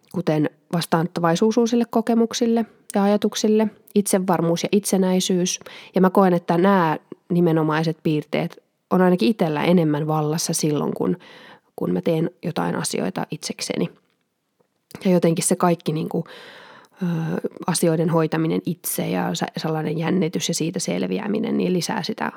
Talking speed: 115 wpm